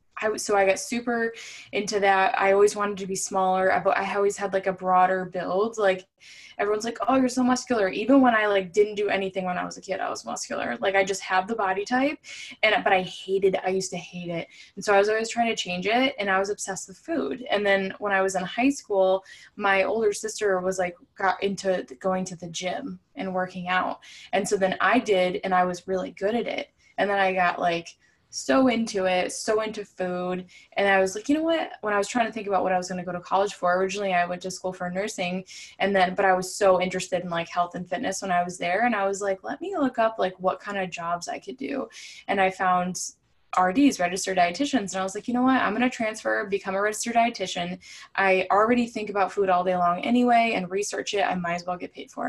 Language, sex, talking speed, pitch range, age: English, female, 250 wpm, 185-215 Hz, 10-29